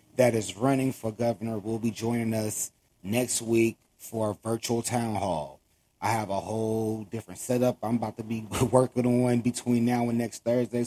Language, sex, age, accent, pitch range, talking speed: English, male, 30-49, American, 105-125 Hz, 180 wpm